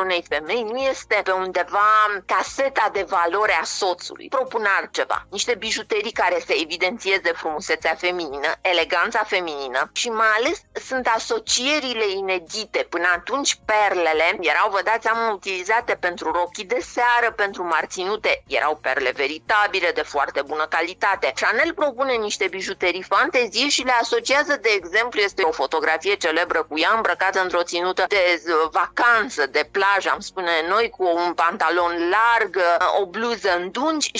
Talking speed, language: 140 wpm, Romanian